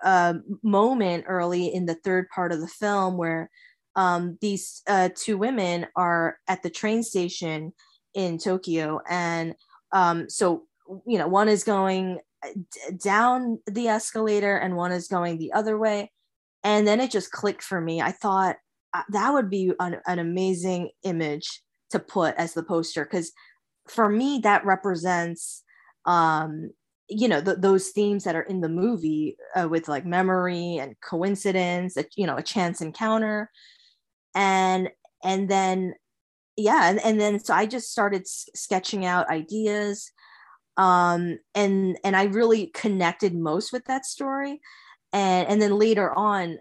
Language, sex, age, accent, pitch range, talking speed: English, female, 10-29, American, 175-210 Hz, 160 wpm